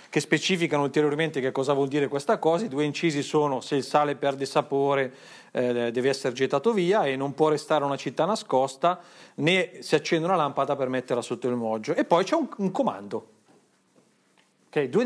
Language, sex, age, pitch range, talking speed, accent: Italian, male, 40-59, 130-170 Hz, 185 wpm, native